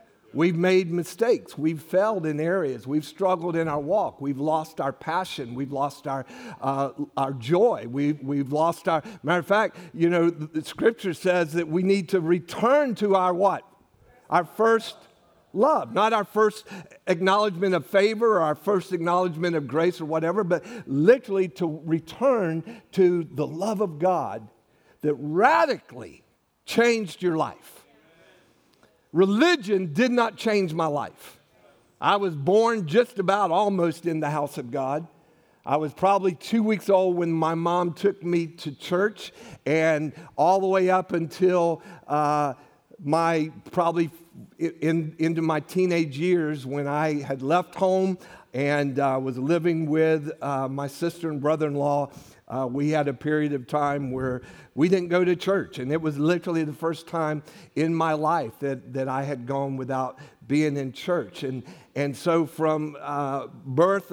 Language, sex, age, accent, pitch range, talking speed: English, male, 50-69, American, 145-185 Hz, 160 wpm